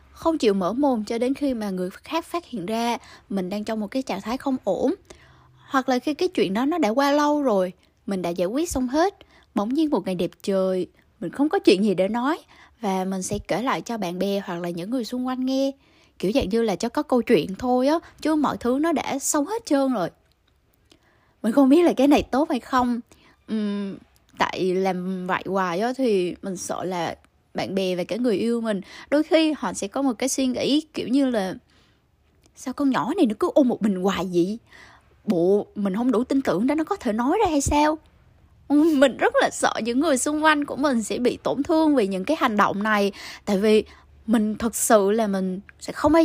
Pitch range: 200-285 Hz